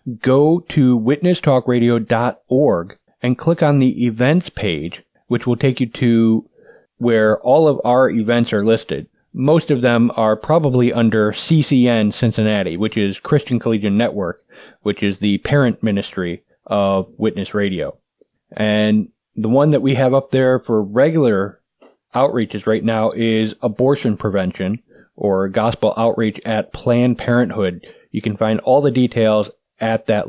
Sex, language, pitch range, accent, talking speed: male, English, 105-130 Hz, American, 145 wpm